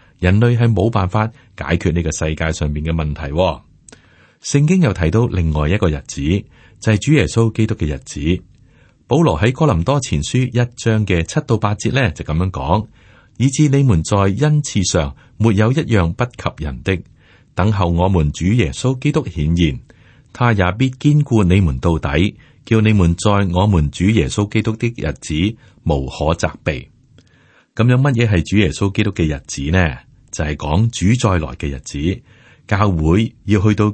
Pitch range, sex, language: 85-120 Hz, male, Chinese